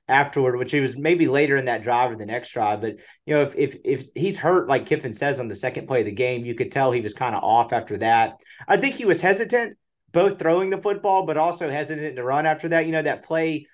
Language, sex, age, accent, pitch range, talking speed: English, male, 30-49, American, 120-160 Hz, 265 wpm